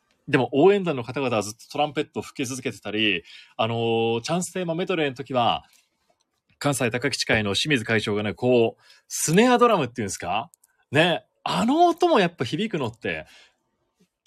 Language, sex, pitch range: Japanese, male, 120-200 Hz